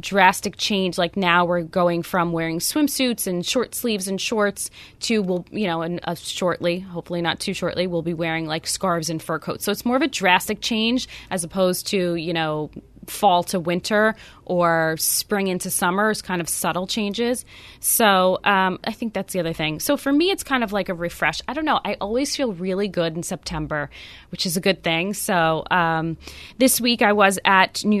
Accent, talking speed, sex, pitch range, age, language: American, 205 wpm, female, 170-215 Hz, 20-39, English